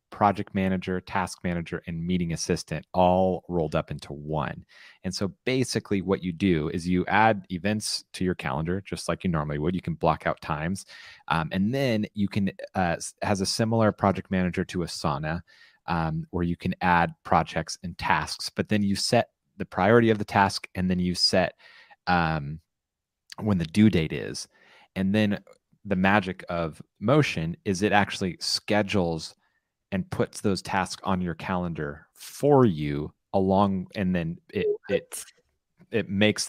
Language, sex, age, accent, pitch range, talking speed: English, male, 30-49, American, 85-105 Hz, 165 wpm